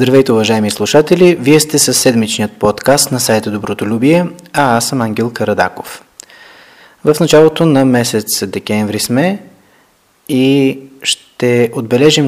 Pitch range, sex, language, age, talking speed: 110-140 Hz, male, Bulgarian, 20-39, 120 wpm